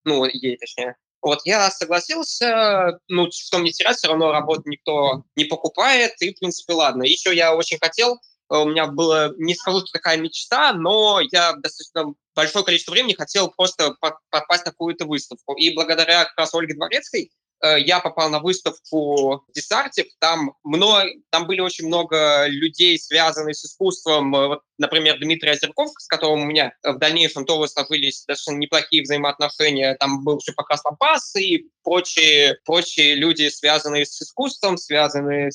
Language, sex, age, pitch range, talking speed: Russian, male, 20-39, 150-175 Hz, 155 wpm